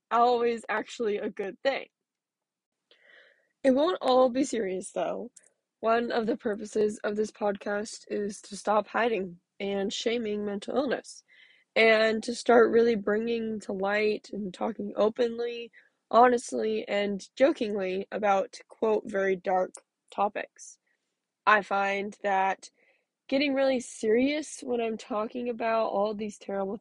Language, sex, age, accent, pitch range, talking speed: English, female, 10-29, American, 205-255 Hz, 130 wpm